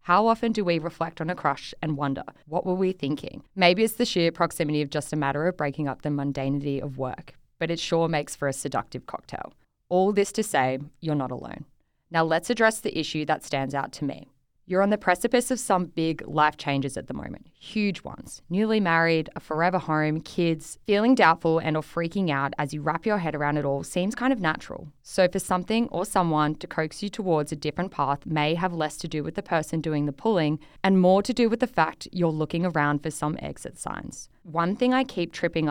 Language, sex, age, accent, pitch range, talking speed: English, female, 20-39, Australian, 150-180 Hz, 225 wpm